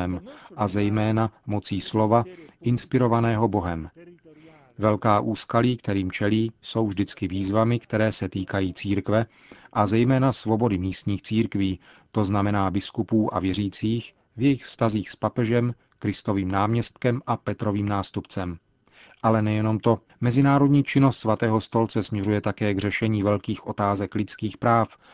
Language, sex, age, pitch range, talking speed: Czech, male, 40-59, 105-120 Hz, 125 wpm